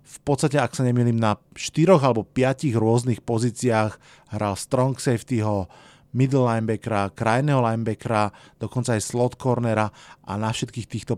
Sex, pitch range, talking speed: male, 115-145 Hz, 140 wpm